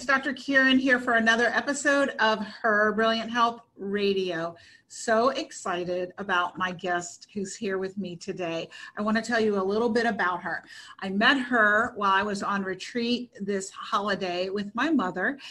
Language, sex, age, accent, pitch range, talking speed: English, female, 40-59, American, 190-225 Hz, 170 wpm